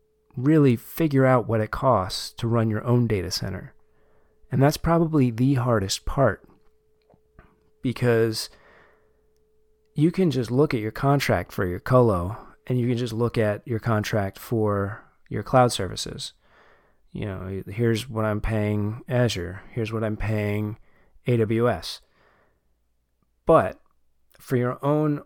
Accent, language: American, English